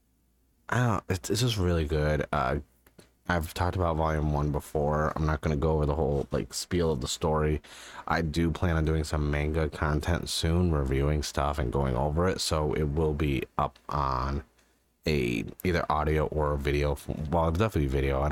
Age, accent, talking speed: 30-49, American, 185 wpm